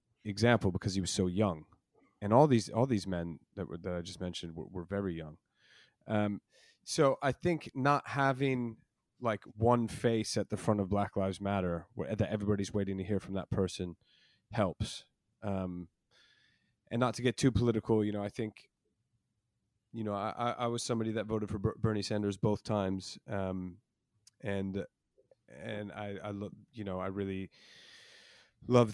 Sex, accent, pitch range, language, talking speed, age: male, American, 95-115 Hz, English, 175 wpm, 30-49